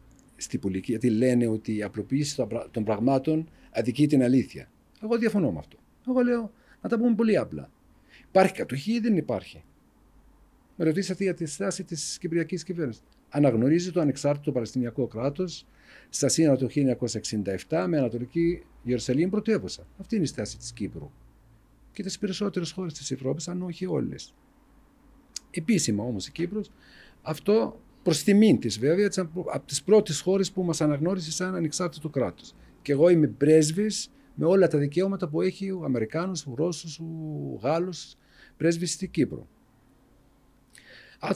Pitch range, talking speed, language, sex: 120-185 Hz, 150 wpm, Greek, male